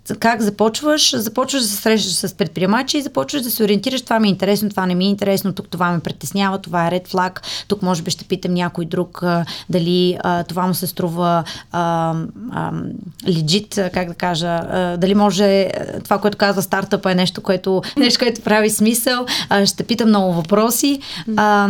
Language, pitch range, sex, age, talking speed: Bulgarian, 180-215 Hz, female, 20-39, 175 wpm